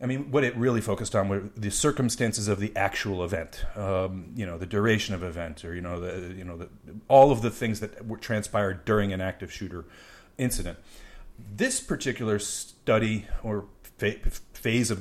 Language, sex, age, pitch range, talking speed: English, male, 40-59, 95-115 Hz, 190 wpm